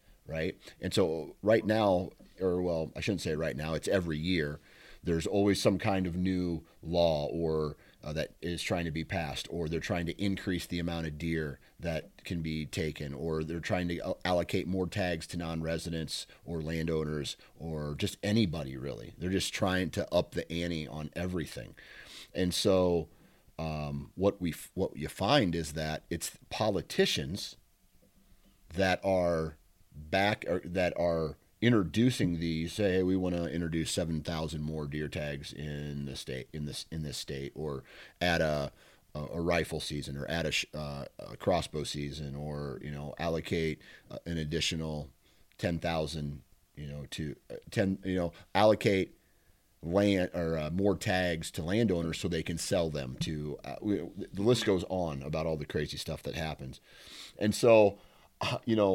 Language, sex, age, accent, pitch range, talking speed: English, male, 40-59, American, 75-95 Hz, 170 wpm